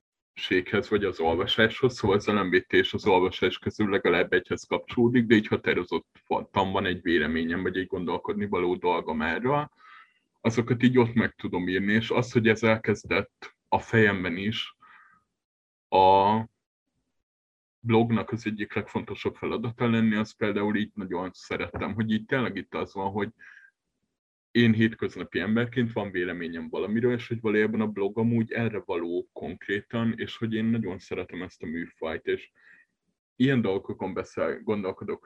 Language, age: Hungarian, 30-49